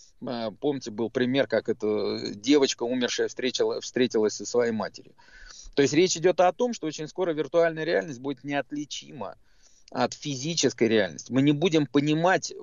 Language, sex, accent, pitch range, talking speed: Russian, male, native, 125-160 Hz, 145 wpm